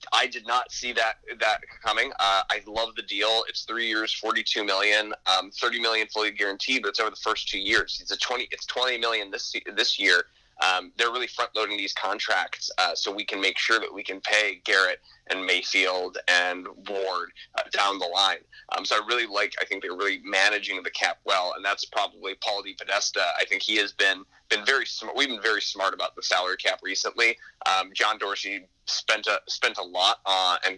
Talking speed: 220 wpm